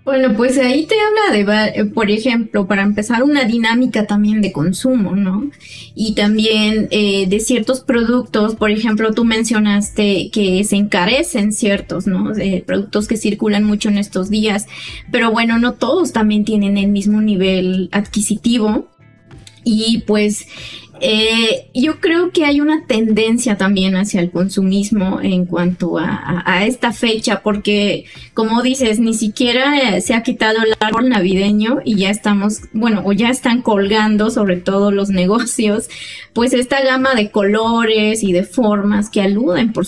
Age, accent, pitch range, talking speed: 20-39, Mexican, 200-245 Hz, 155 wpm